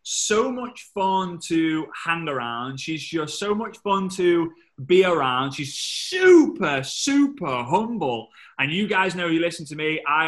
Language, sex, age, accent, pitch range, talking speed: English, male, 20-39, British, 140-180 Hz, 160 wpm